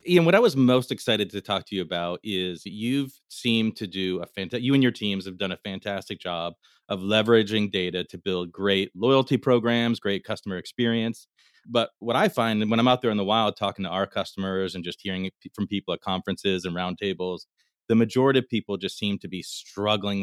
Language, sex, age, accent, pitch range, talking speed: English, male, 30-49, American, 95-120 Hz, 210 wpm